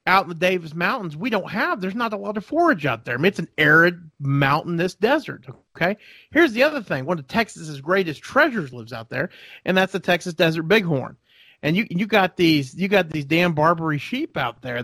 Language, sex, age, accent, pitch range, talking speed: English, male, 40-59, American, 135-175 Hz, 225 wpm